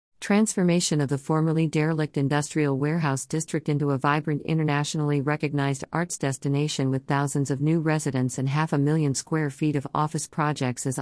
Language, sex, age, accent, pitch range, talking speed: English, female, 50-69, American, 135-160 Hz, 165 wpm